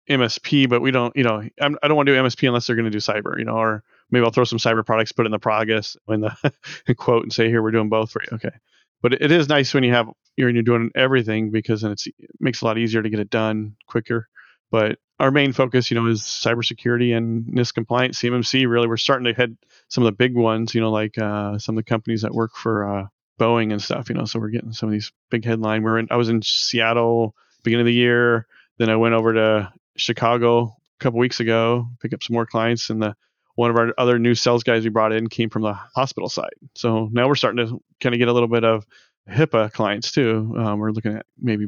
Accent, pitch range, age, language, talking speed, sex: American, 110-125 Hz, 30-49, English, 255 wpm, male